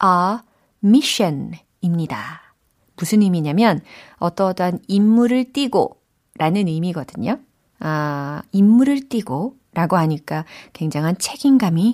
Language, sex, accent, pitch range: Korean, female, native, 165-255 Hz